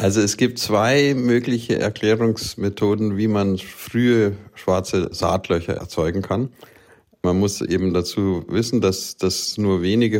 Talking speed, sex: 130 wpm, male